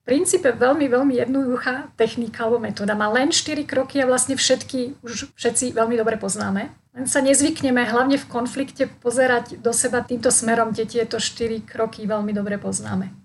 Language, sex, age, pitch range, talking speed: Slovak, female, 40-59, 215-255 Hz, 170 wpm